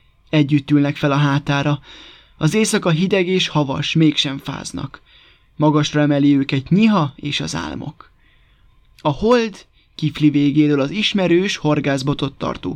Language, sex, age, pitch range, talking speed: Hungarian, male, 20-39, 140-170 Hz, 125 wpm